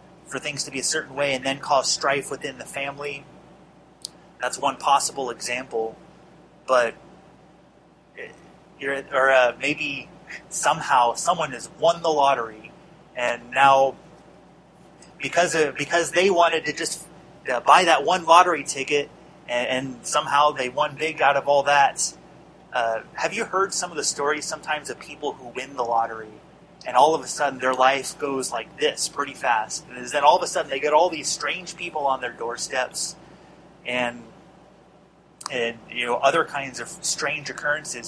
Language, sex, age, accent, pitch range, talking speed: English, male, 30-49, American, 130-160 Hz, 165 wpm